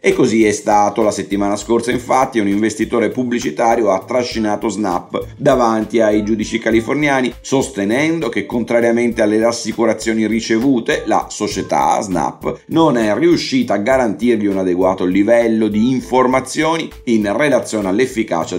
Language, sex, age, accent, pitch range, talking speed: Italian, male, 30-49, native, 100-120 Hz, 130 wpm